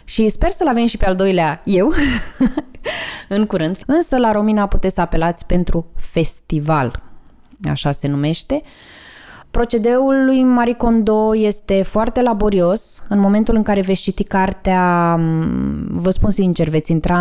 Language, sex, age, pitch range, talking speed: Romanian, female, 20-39, 170-225 Hz, 145 wpm